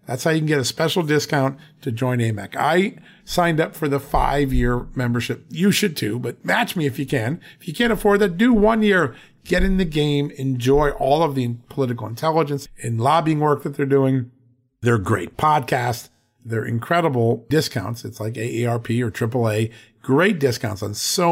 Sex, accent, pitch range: male, American, 115-165 Hz